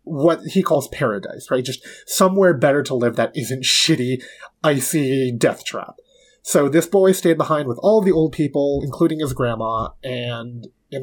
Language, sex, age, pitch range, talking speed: English, male, 20-39, 130-175 Hz, 170 wpm